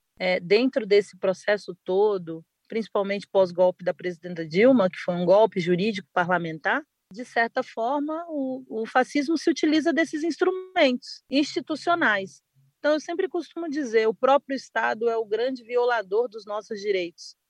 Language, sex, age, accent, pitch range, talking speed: Portuguese, female, 40-59, Brazilian, 185-235 Hz, 145 wpm